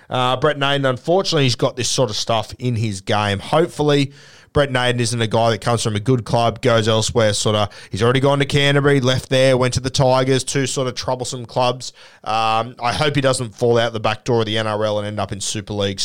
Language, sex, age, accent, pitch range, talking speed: English, male, 20-39, Australian, 110-130 Hz, 240 wpm